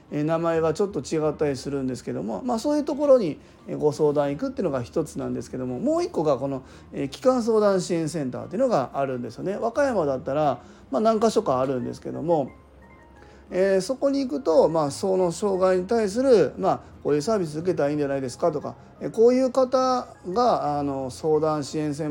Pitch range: 140-205 Hz